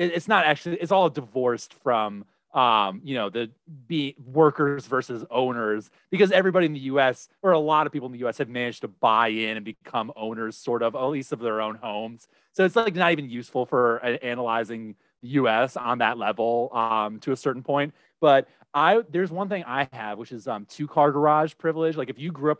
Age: 30-49